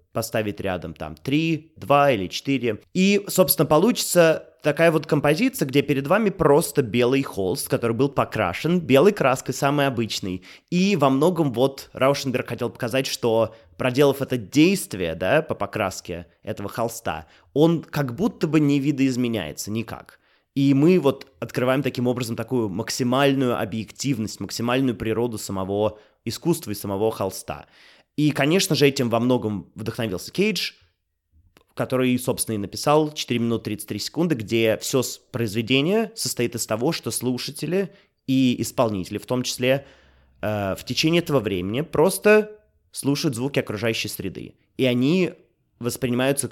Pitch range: 110-145 Hz